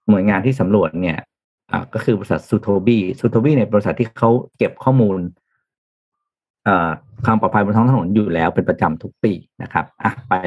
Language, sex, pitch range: Thai, male, 105-135 Hz